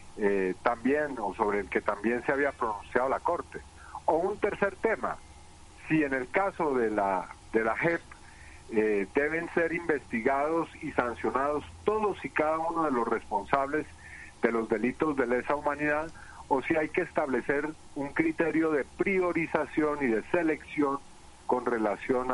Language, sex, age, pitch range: Spanish, male, 50-69, 110-155 Hz